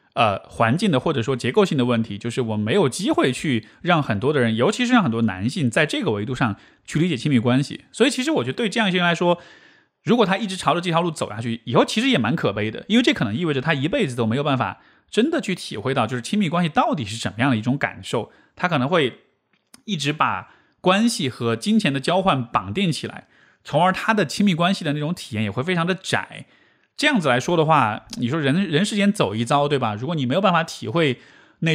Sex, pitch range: male, 120-195 Hz